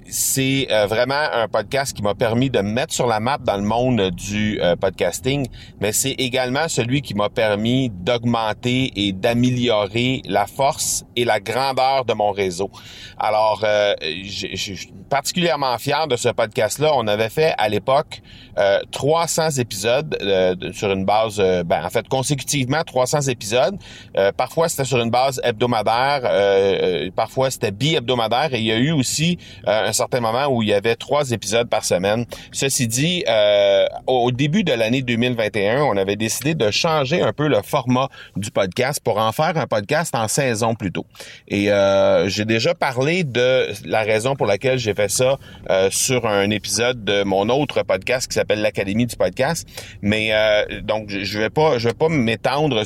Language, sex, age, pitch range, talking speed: French, male, 40-59, 105-135 Hz, 180 wpm